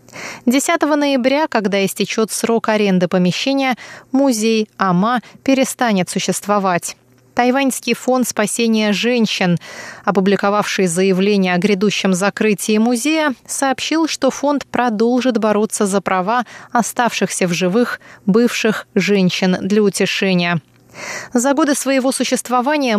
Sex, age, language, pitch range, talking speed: female, 20-39, Russian, 195-250 Hz, 100 wpm